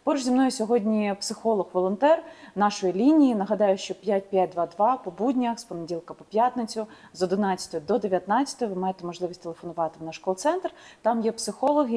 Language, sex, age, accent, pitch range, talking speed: Ukrainian, female, 30-49, native, 190-245 Hz, 150 wpm